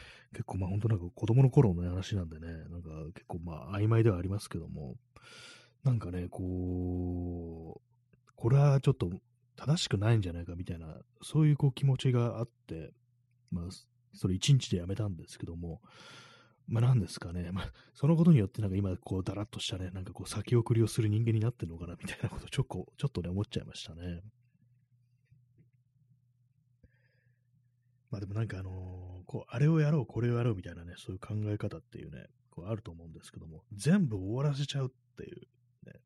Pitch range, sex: 95-125 Hz, male